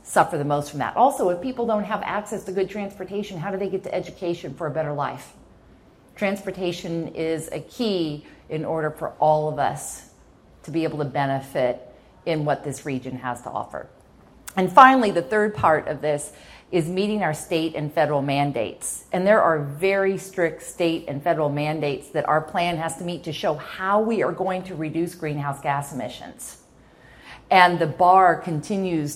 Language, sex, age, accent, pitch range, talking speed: English, female, 40-59, American, 150-190 Hz, 185 wpm